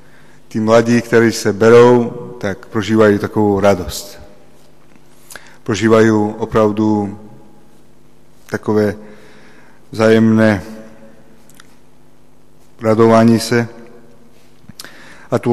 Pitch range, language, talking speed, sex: 100-120 Hz, Slovak, 65 wpm, male